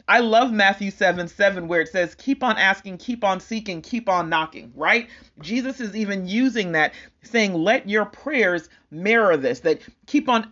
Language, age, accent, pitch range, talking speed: English, 40-59, American, 160-230 Hz, 185 wpm